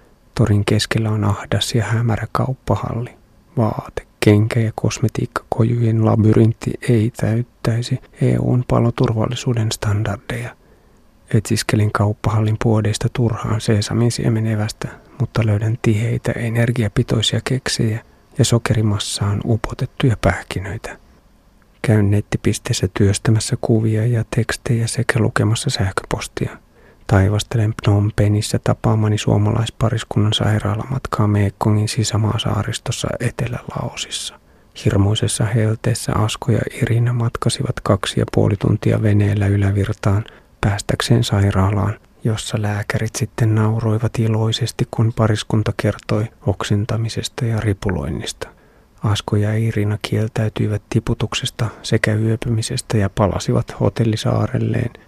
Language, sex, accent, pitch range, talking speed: Finnish, male, native, 105-120 Hz, 90 wpm